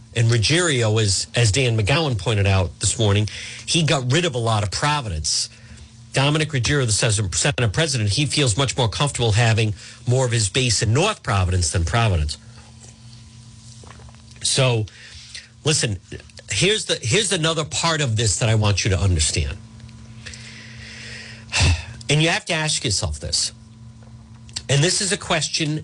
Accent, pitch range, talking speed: American, 110-150 Hz, 145 wpm